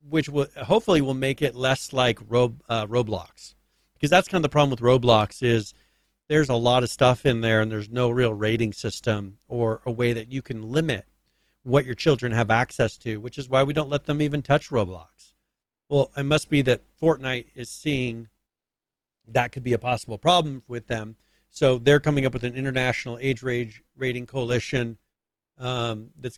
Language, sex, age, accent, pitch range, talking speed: English, male, 40-59, American, 115-135 Hz, 195 wpm